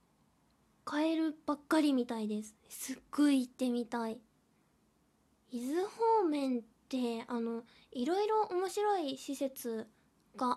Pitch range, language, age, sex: 250-335 Hz, Japanese, 10-29, female